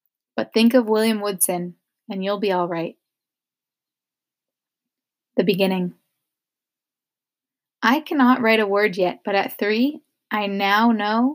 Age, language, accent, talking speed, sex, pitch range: 20-39, English, American, 125 wpm, female, 200-230 Hz